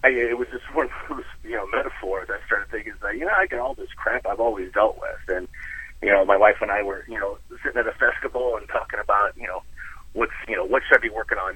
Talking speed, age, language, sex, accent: 255 wpm, 30-49, English, male, American